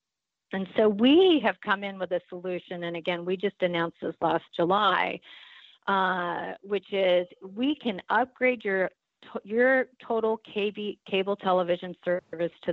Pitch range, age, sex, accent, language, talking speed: 165-200 Hz, 40-59, female, American, English, 140 wpm